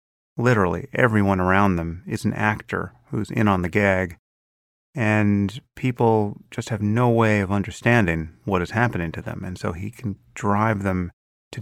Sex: male